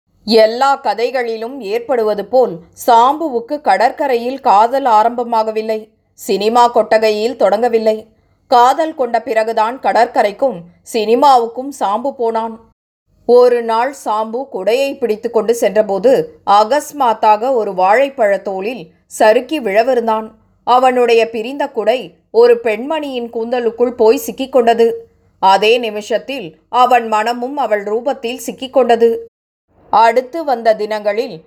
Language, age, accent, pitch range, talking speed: Tamil, 20-39, native, 220-255 Hz, 90 wpm